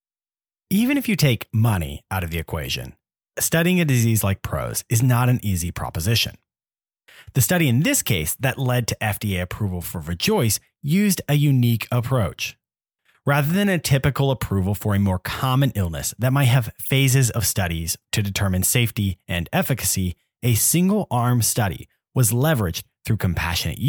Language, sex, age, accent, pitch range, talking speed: English, male, 30-49, American, 100-140 Hz, 160 wpm